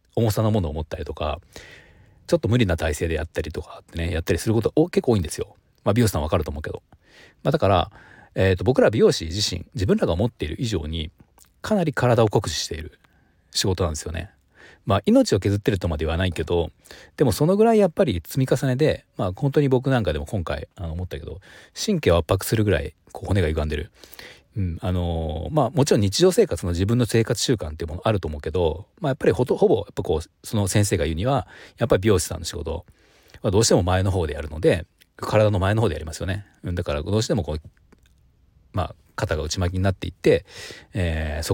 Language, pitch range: Japanese, 85-115 Hz